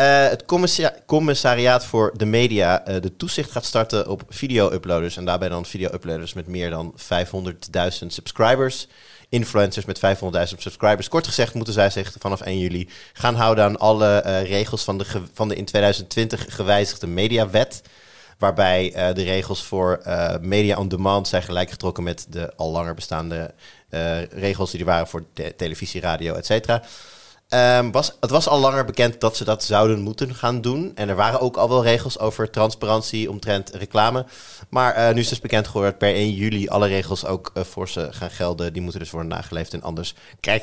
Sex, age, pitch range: male, 30-49, 95-115 Hz